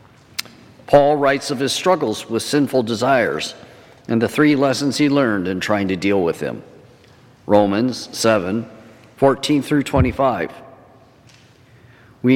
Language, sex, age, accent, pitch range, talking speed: English, male, 50-69, American, 115-155 Hz, 120 wpm